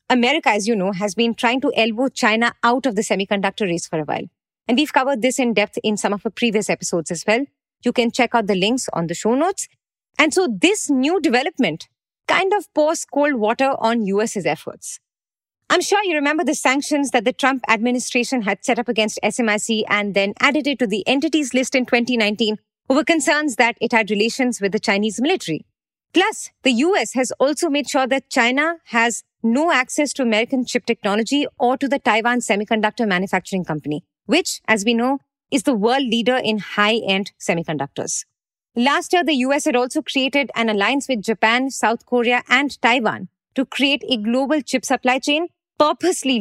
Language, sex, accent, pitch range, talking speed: English, female, Indian, 220-285 Hz, 190 wpm